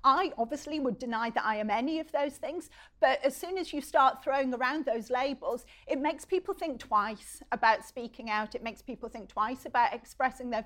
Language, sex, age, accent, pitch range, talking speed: English, female, 40-59, British, 230-275 Hz, 210 wpm